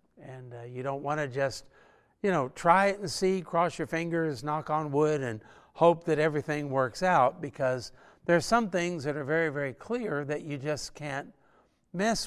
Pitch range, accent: 135-180 Hz, American